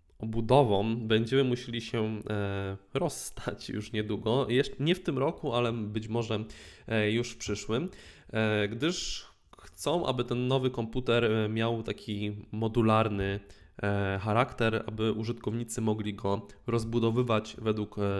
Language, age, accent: Polish, 20-39, native